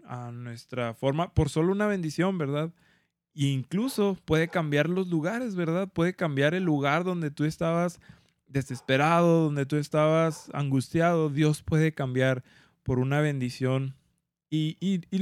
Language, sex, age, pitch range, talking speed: Spanish, male, 20-39, 135-165 Hz, 135 wpm